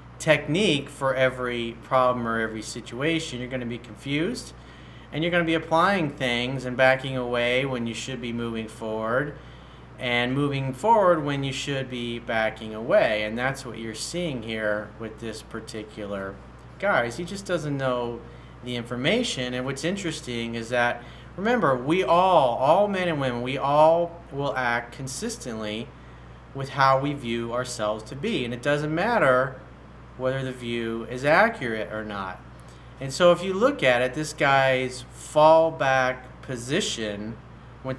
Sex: male